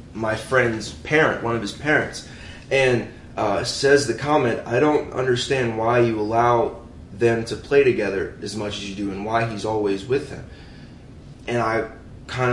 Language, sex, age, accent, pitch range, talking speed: English, male, 20-39, American, 115-135 Hz, 170 wpm